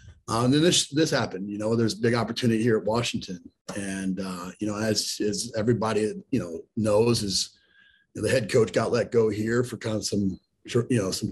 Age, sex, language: 40-59, male, English